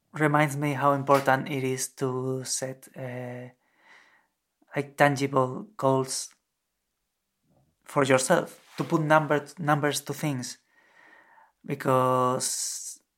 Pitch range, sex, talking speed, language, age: 130-150 Hz, male, 85 wpm, English, 30-49